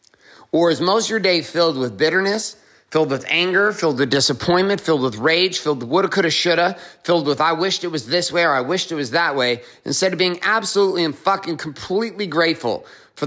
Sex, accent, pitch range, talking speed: male, American, 130-180 Hz, 215 wpm